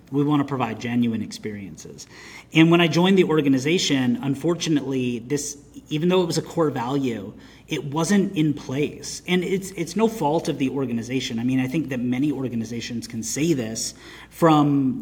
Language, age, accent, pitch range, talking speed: English, 30-49, American, 130-165 Hz, 175 wpm